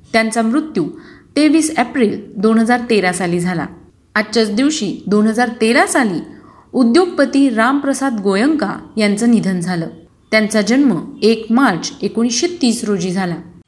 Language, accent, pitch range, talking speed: Marathi, native, 205-270 Hz, 125 wpm